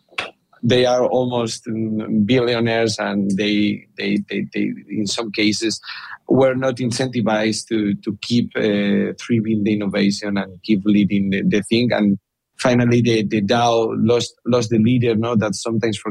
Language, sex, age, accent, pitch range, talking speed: English, male, 30-49, Spanish, 105-120 Hz, 155 wpm